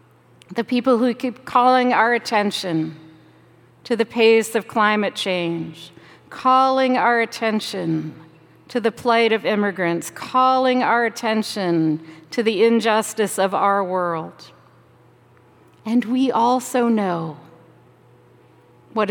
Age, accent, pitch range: 50-69, American, 170-240 Hz